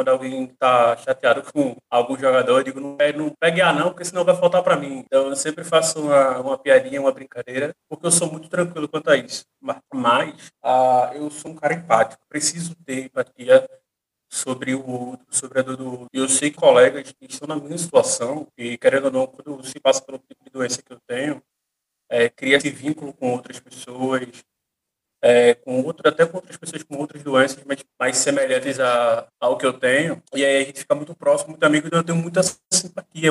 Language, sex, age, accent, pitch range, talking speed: Portuguese, male, 20-39, Brazilian, 135-180 Hz, 215 wpm